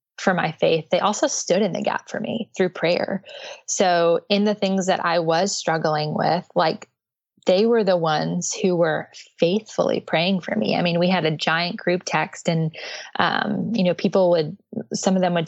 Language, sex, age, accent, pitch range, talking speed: English, female, 20-39, American, 170-200 Hz, 200 wpm